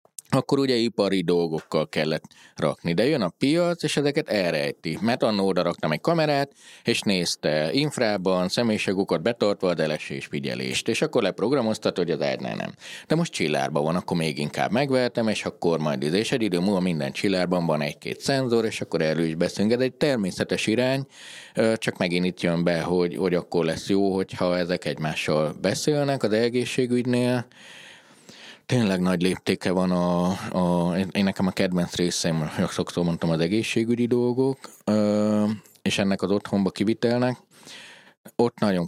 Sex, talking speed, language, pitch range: male, 155 wpm, Hungarian, 85-115 Hz